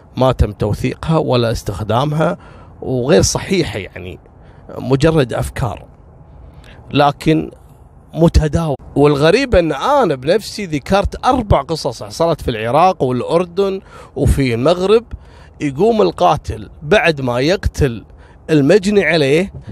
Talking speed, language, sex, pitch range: 95 wpm, Arabic, male, 120-165 Hz